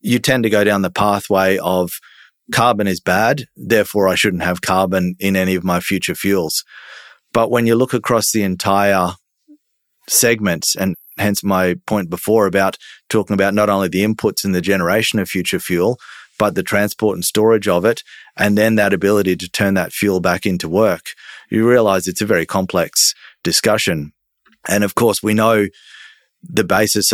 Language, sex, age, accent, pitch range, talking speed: English, male, 30-49, Australian, 95-105 Hz, 175 wpm